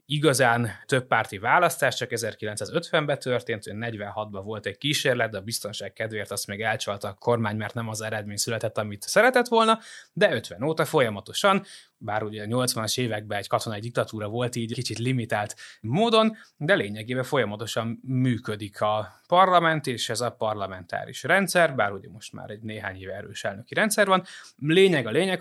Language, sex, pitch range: Hungarian, male, 110-165 Hz